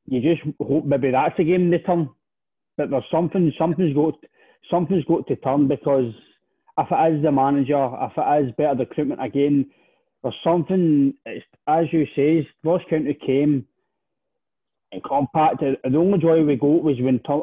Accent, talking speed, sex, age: British, 175 wpm, male, 30-49